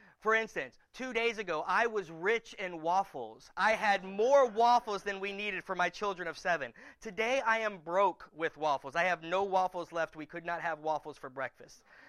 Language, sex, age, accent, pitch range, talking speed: English, male, 30-49, American, 155-205 Hz, 200 wpm